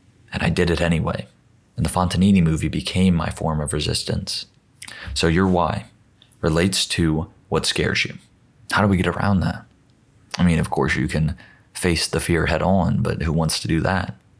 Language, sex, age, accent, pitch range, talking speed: English, male, 30-49, American, 80-90 Hz, 190 wpm